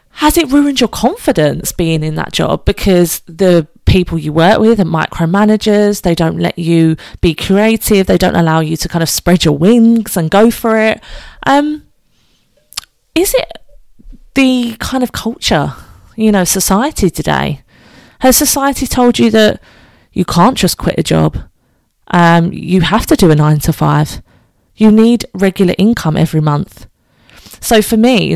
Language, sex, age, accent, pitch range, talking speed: English, female, 30-49, British, 165-225 Hz, 165 wpm